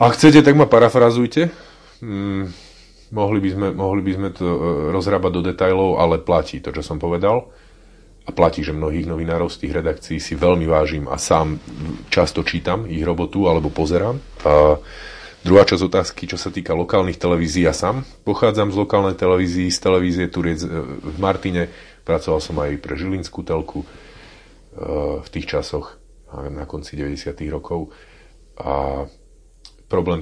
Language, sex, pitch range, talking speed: Slovak, male, 75-90 Hz, 150 wpm